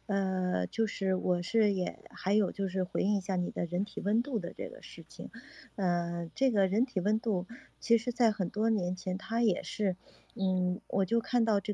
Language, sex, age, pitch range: Chinese, female, 50-69, 180-220 Hz